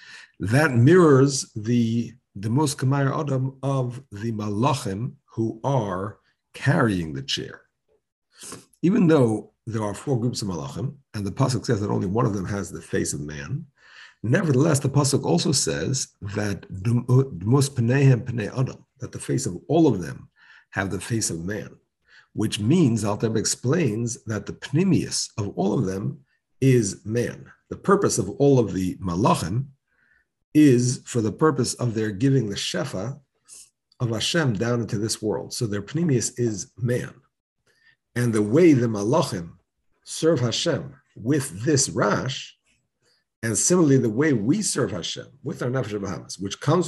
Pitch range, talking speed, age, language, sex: 105-135 Hz, 155 wpm, 50-69, English, male